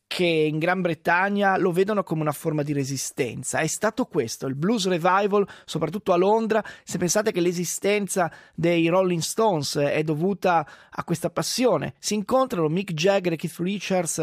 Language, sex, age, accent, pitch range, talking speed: Italian, male, 20-39, native, 155-195 Hz, 165 wpm